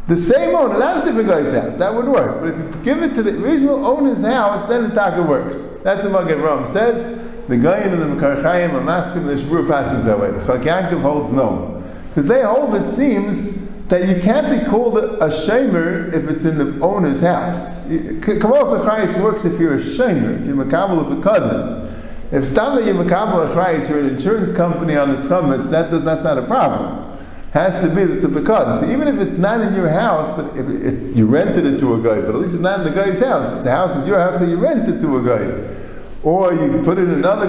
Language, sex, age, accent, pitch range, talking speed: English, male, 50-69, American, 160-230 Hz, 225 wpm